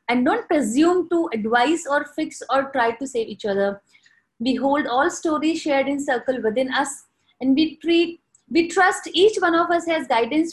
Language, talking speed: English, 190 wpm